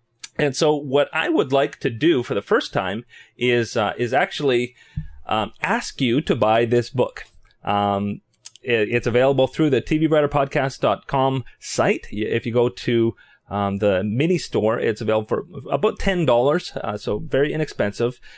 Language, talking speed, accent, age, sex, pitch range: English, 155 wpm, American, 30-49, male, 105-135 Hz